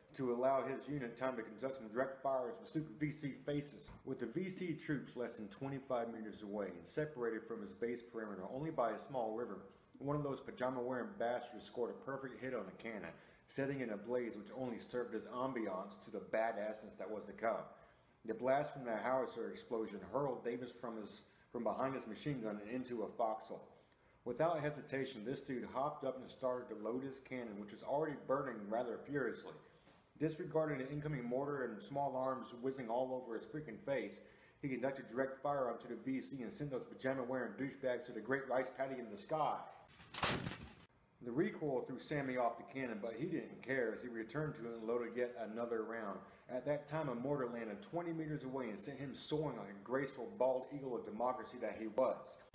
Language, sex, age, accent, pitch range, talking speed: English, male, 40-59, American, 115-140 Hz, 205 wpm